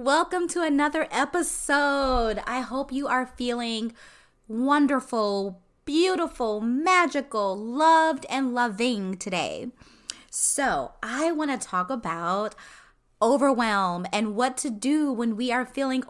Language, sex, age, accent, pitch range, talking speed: English, female, 20-39, American, 205-275 Hz, 115 wpm